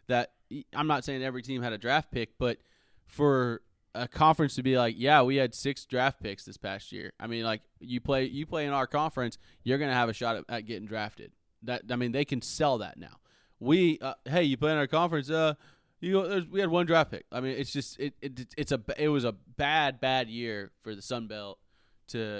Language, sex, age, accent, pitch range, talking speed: English, male, 20-39, American, 115-150 Hz, 235 wpm